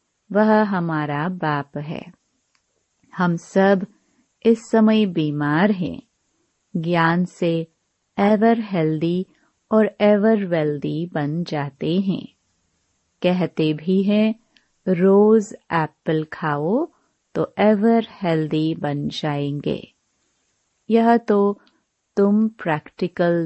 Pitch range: 155-210 Hz